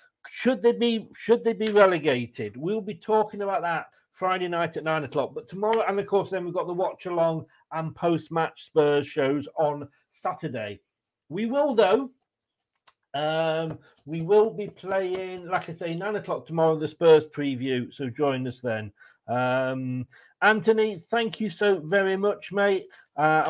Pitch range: 160-235 Hz